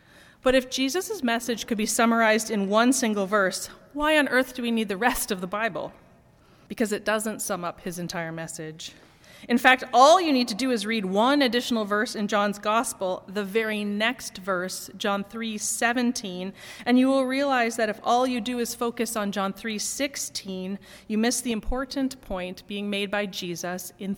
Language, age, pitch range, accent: English, 30-49, 200-240 Hz, American